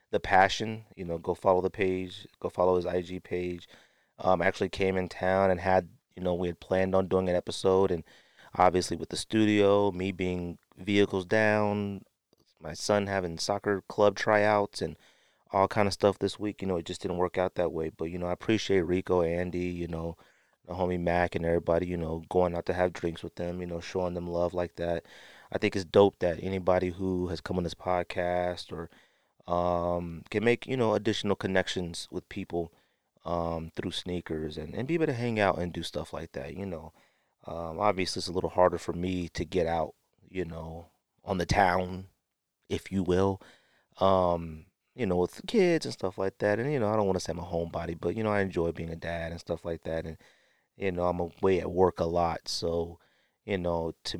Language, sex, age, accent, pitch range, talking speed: English, male, 30-49, American, 85-95 Hz, 215 wpm